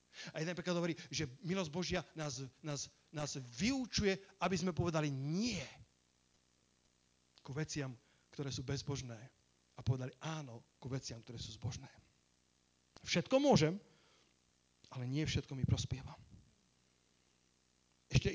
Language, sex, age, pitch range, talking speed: Slovak, male, 40-59, 125-190 Hz, 120 wpm